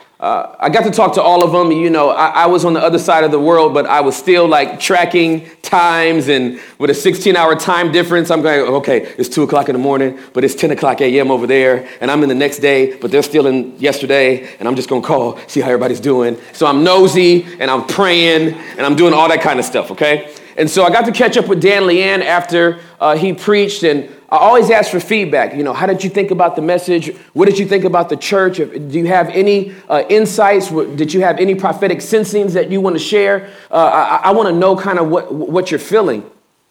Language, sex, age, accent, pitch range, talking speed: English, male, 40-59, American, 150-190 Hz, 250 wpm